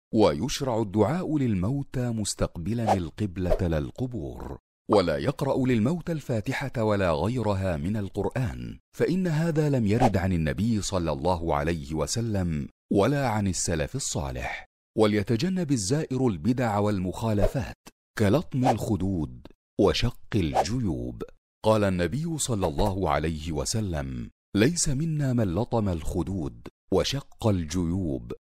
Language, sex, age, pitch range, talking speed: Arabic, male, 50-69, 85-125 Hz, 105 wpm